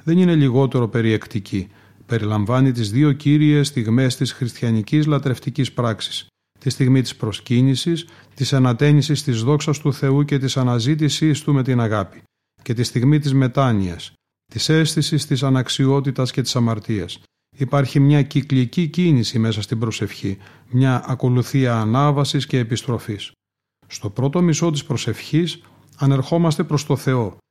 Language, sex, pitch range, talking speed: Greek, male, 115-145 Hz, 135 wpm